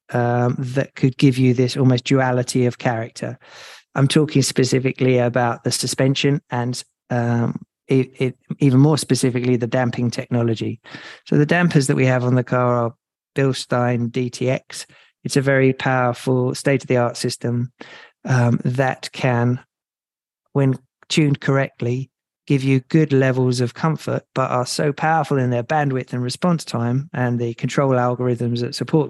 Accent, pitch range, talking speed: British, 120-140 Hz, 145 wpm